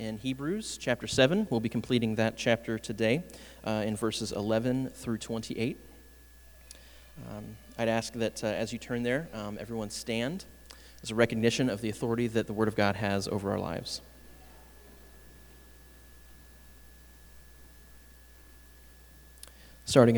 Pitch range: 70-115 Hz